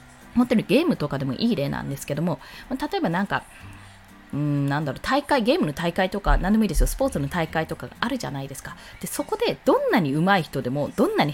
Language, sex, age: Japanese, female, 20-39